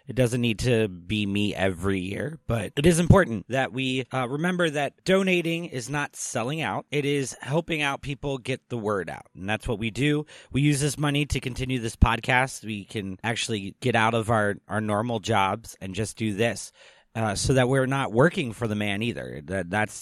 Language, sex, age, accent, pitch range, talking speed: English, male, 30-49, American, 110-140 Hz, 210 wpm